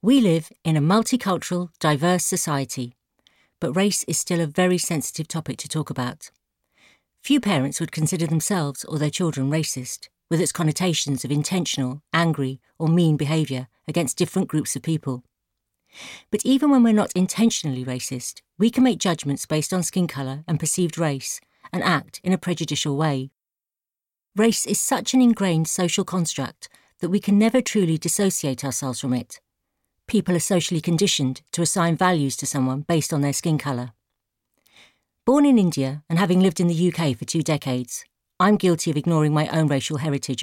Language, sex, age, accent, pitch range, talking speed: English, female, 50-69, British, 140-185 Hz, 170 wpm